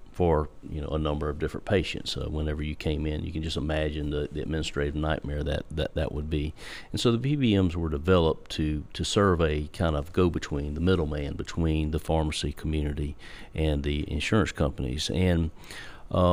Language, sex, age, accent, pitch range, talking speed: English, male, 40-59, American, 80-95 Hz, 190 wpm